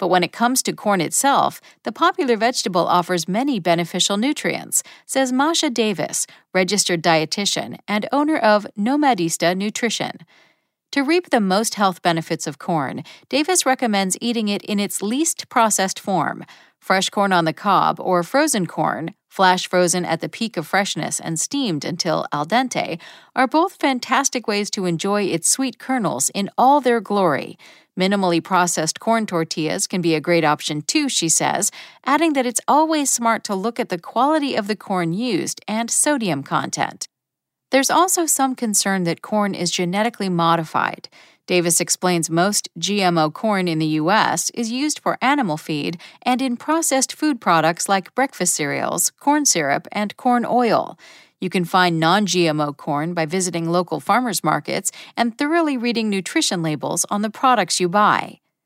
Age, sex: 40-59, female